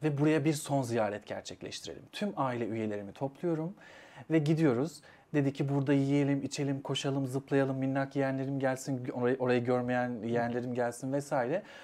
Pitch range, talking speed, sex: 120-145 Hz, 140 wpm, male